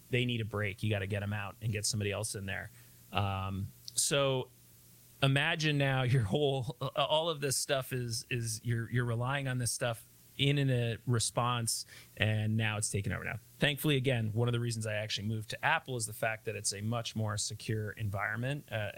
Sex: male